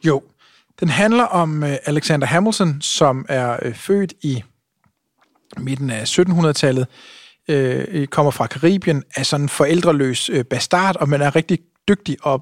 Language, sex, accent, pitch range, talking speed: Danish, male, native, 140-175 Hz, 130 wpm